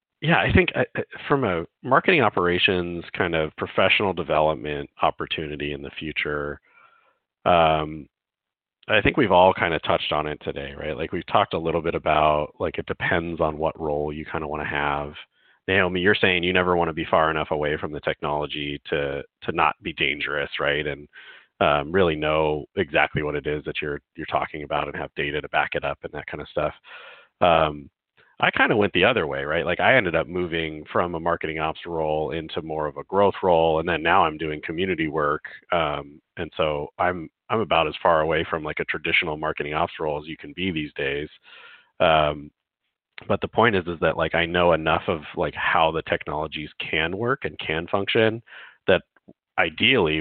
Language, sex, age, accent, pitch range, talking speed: English, male, 40-59, American, 75-85 Hz, 200 wpm